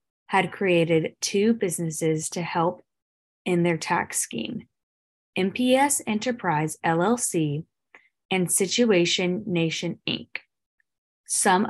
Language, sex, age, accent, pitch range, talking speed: English, female, 20-39, American, 170-215 Hz, 90 wpm